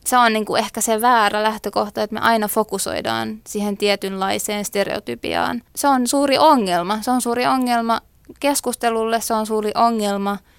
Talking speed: 160 wpm